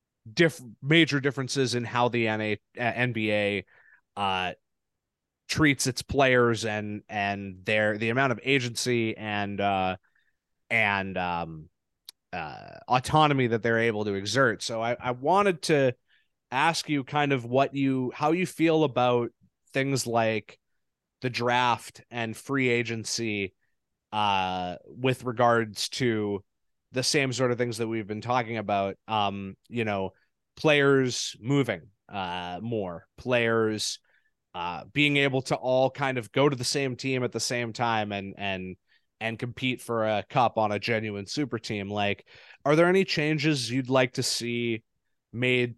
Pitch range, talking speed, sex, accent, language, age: 110-130 Hz, 150 wpm, male, American, English, 30-49